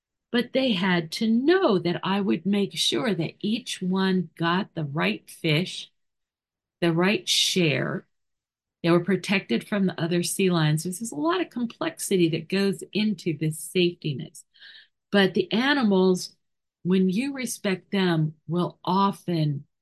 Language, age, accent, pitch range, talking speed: English, 50-69, American, 155-195 Hz, 145 wpm